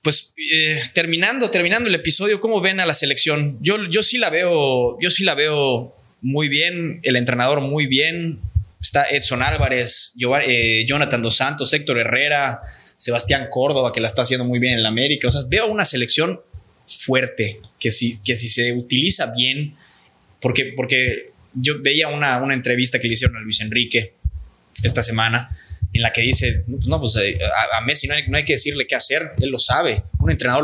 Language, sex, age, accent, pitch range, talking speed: Spanish, male, 20-39, Mexican, 110-145 Hz, 185 wpm